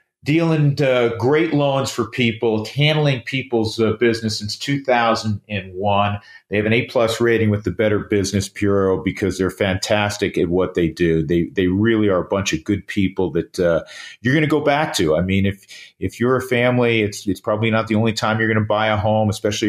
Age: 40-59